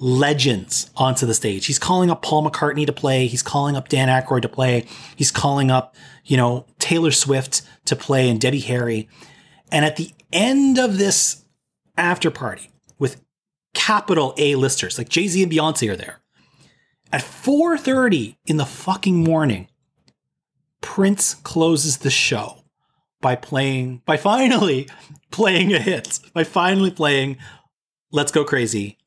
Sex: male